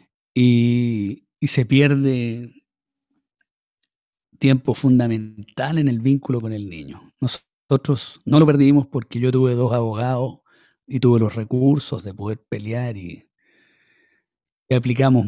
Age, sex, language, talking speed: 50-69, male, Spanish, 120 wpm